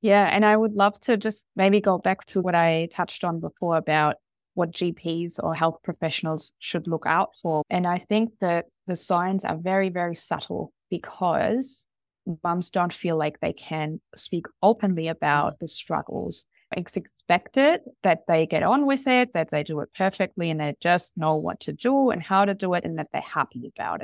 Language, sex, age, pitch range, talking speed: English, female, 20-39, 160-190 Hz, 195 wpm